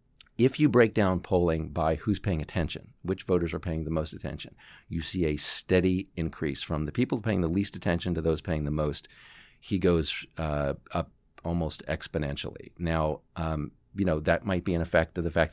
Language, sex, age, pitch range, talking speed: English, male, 40-59, 80-95 Hz, 195 wpm